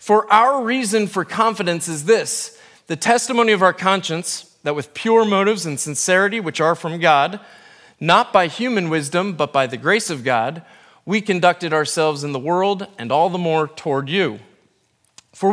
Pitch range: 150-205 Hz